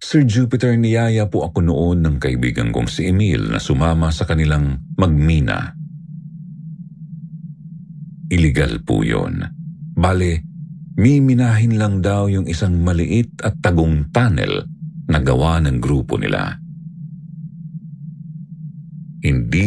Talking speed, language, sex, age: 105 wpm, Filipino, male, 50-69